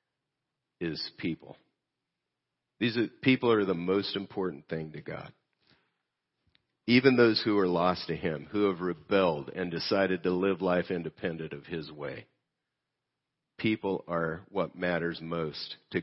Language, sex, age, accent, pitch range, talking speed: English, male, 50-69, American, 90-130 Hz, 140 wpm